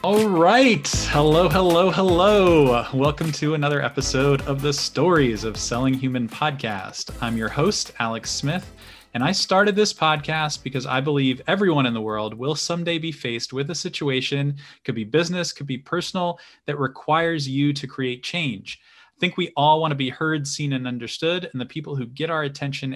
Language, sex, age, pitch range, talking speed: English, male, 20-39, 130-160 Hz, 185 wpm